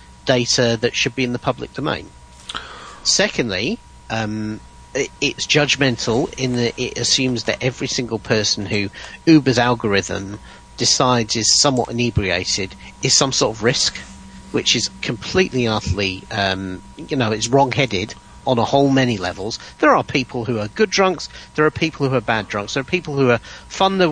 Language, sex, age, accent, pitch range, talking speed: English, male, 40-59, British, 105-150 Hz, 165 wpm